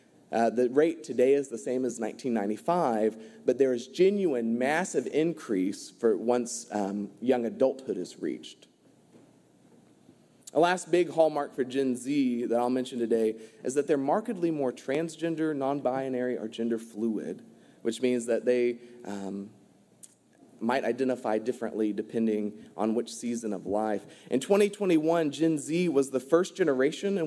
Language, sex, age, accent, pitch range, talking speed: English, male, 30-49, American, 115-155 Hz, 145 wpm